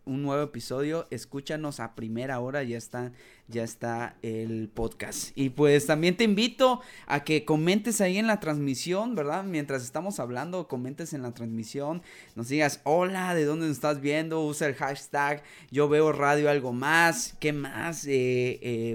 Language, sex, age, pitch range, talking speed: Spanish, male, 20-39, 135-175 Hz, 170 wpm